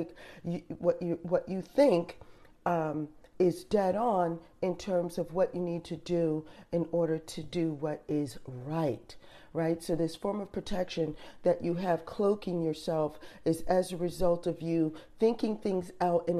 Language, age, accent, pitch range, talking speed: English, 40-59, American, 165-190 Hz, 170 wpm